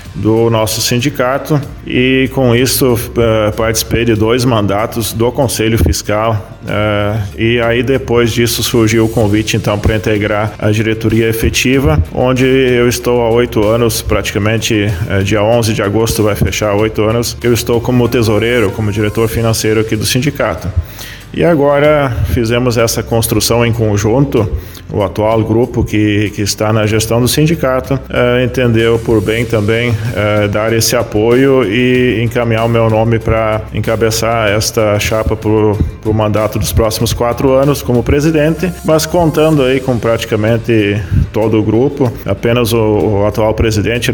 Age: 20-39